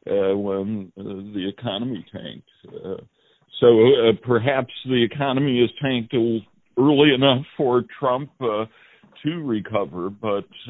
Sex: male